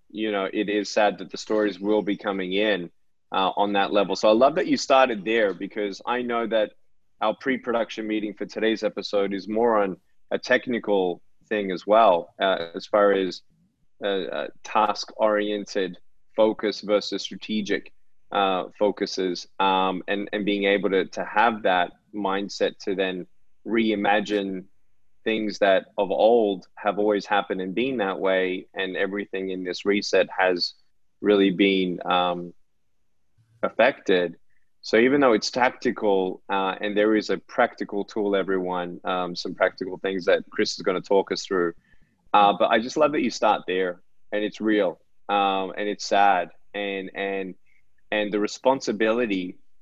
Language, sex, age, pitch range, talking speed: English, male, 20-39, 95-105 Hz, 160 wpm